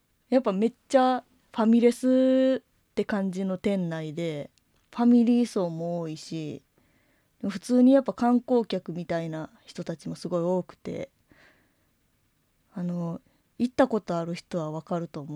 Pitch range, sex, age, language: 165-220 Hz, female, 20-39, Japanese